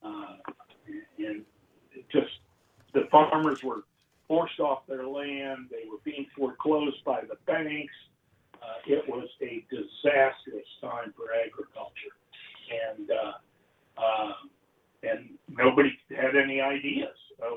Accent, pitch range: American, 125-195 Hz